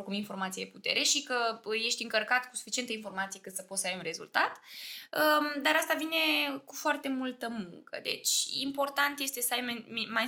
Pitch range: 210-275 Hz